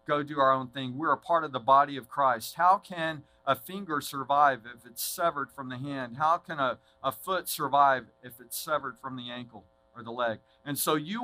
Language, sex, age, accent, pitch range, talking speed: English, male, 50-69, American, 130-165 Hz, 220 wpm